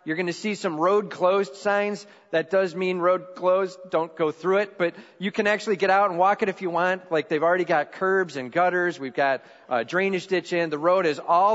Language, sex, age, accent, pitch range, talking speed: English, male, 40-59, American, 130-185 Hz, 240 wpm